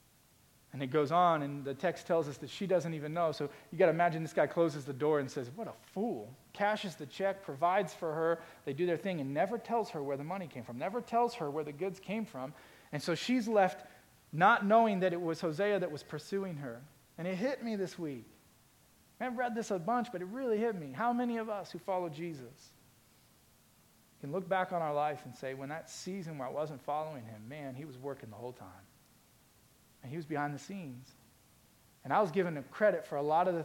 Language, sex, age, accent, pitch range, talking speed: English, male, 40-59, American, 135-175 Hz, 235 wpm